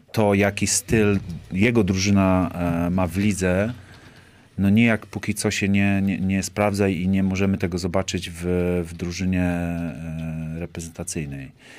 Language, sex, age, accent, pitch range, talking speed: Polish, male, 30-49, native, 90-105 Hz, 150 wpm